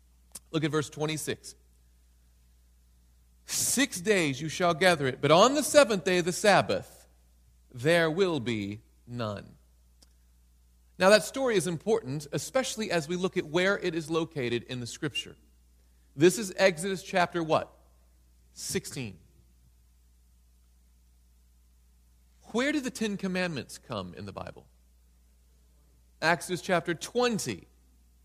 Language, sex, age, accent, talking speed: English, male, 40-59, American, 120 wpm